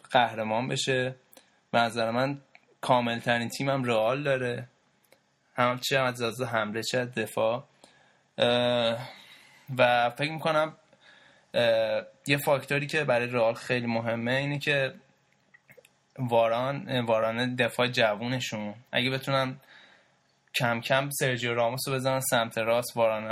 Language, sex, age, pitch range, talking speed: Persian, male, 20-39, 115-135 Hz, 105 wpm